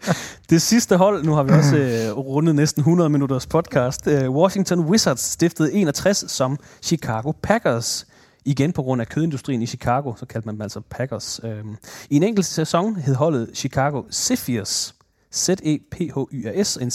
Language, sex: English, male